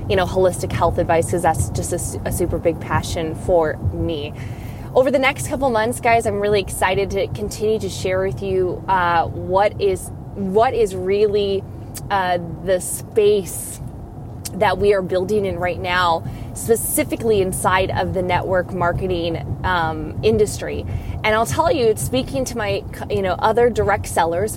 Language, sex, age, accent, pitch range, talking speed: English, female, 20-39, American, 185-230 Hz, 160 wpm